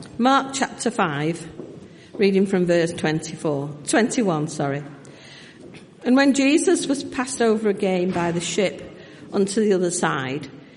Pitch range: 175-235 Hz